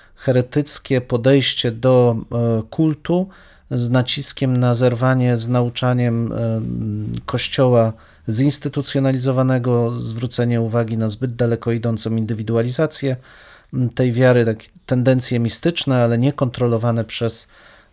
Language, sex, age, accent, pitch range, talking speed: Polish, male, 40-59, native, 120-145 Hz, 100 wpm